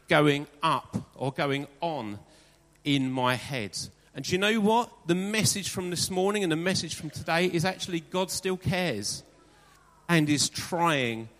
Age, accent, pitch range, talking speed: 40-59, British, 140-195 Hz, 165 wpm